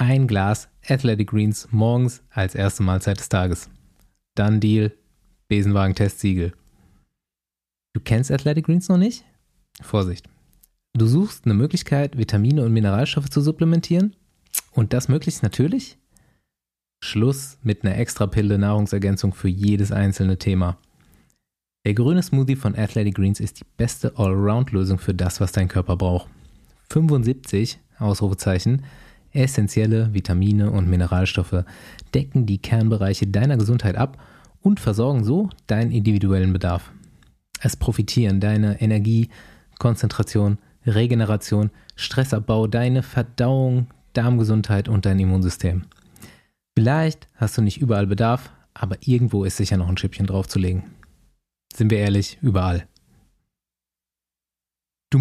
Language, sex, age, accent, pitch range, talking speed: German, male, 20-39, German, 95-125 Hz, 120 wpm